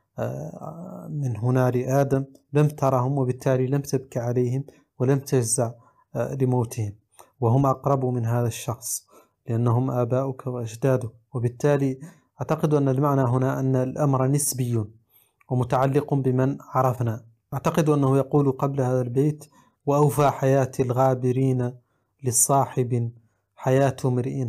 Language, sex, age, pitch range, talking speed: Arabic, male, 30-49, 120-140 Hz, 105 wpm